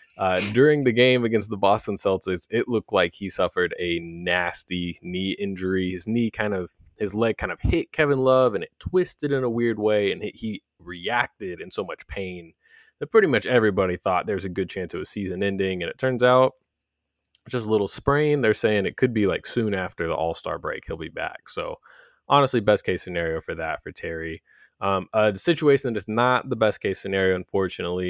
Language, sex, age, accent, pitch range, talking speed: English, male, 20-39, American, 95-125 Hz, 210 wpm